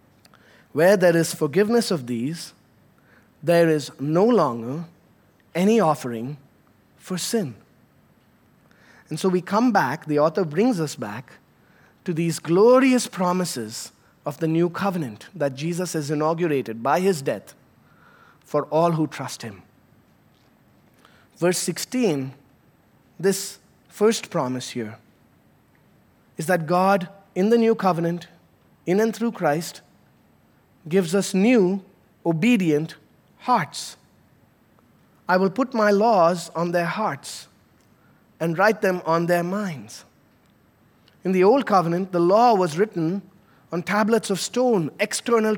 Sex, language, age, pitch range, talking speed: male, English, 20-39, 155-210 Hz, 120 wpm